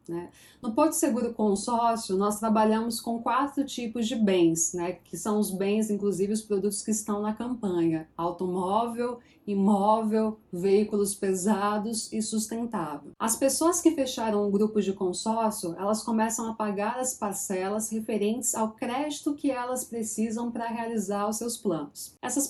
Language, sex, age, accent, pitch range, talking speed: Portuguese, female, 20-39, Brazilian, 200-245 Hz, 150 wpm